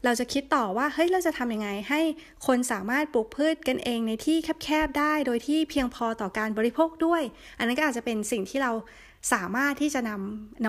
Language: Thai